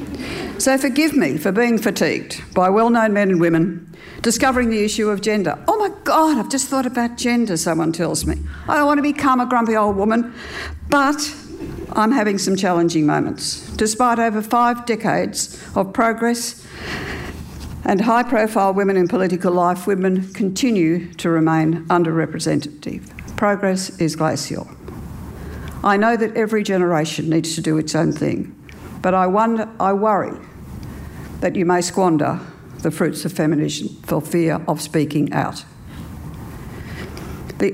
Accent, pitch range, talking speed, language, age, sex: Australian, 165-230 Hz, 145 wpm, English, 60-79, female